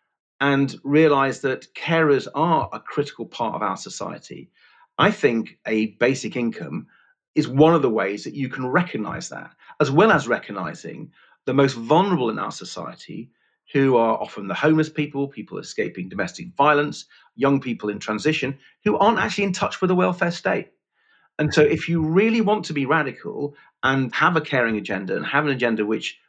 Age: 40-59